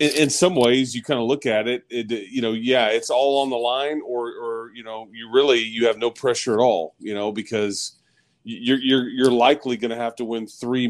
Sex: male